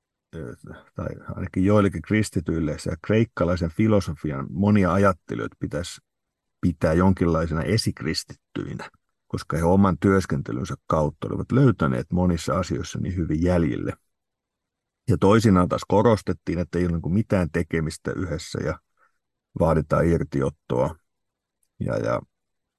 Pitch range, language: 85-110 Hz, Finnish